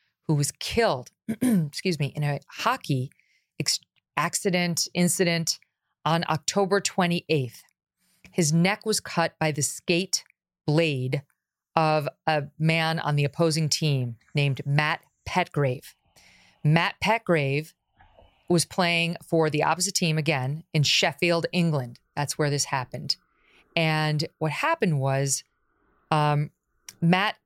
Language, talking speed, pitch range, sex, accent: English, 120 wpm, 145-175 Hz, female, American